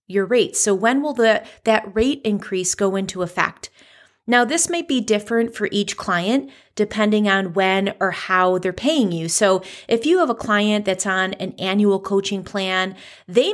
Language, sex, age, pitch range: English, female, 30-49, 190-235 Hz